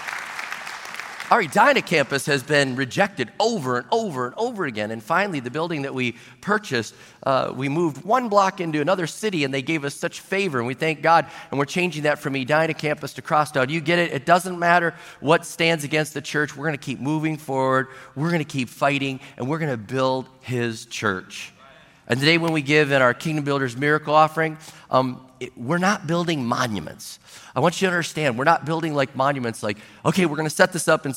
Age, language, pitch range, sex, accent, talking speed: 40-59, English, 140-180 Hz, male, American, 210 wpm